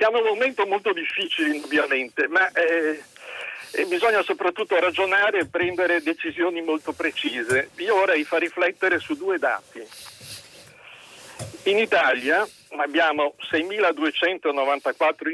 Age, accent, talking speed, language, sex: 60-79, native, 110 wpm, Italian, male